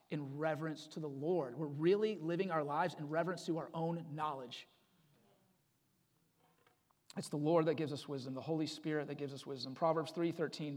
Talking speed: 185 wpm